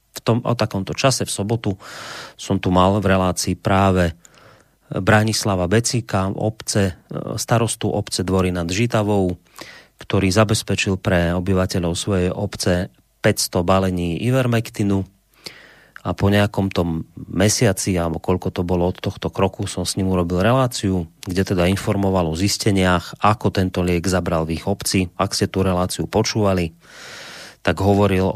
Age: 30-49